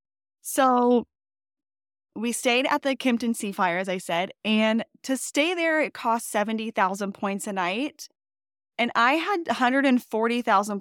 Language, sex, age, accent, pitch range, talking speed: English, female, 10-29, American, 200-255 Hz, 135 wpm